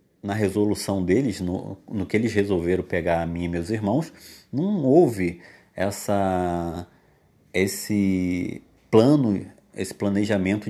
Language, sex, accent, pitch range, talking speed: Portuguese, male, Brazilian, 95-125 Hz, 110 wpm